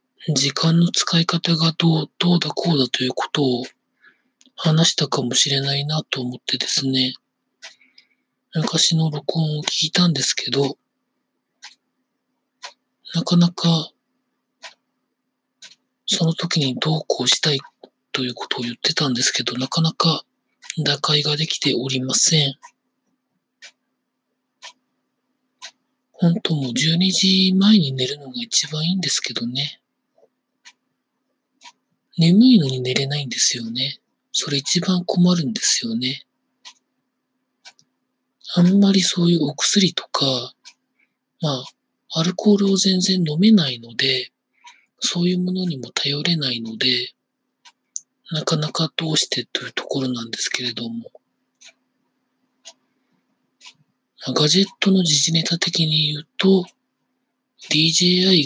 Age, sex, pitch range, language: 40-59, male, 135-185 Hz, Japanese